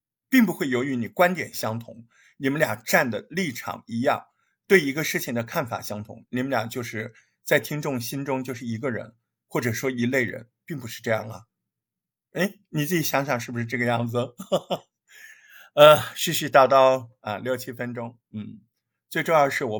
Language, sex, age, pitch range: Chinese, male, 50-69, 115-180 Hz